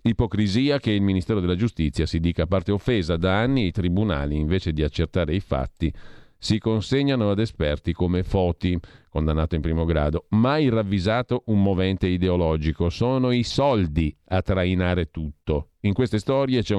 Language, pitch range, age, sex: Italian, 80-105 Hz, 50-69, male